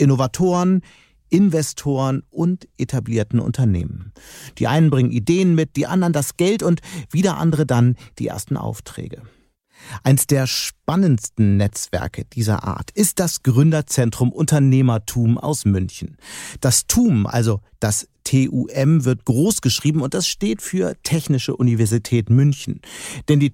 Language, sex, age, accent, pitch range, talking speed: German, male, 40-59, German, 115-155 Hz, 125 wpm